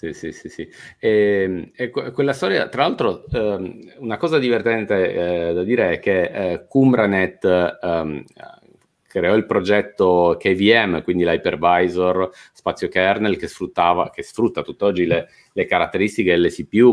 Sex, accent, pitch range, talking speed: male, native, 90-120 Hz, 140 wpm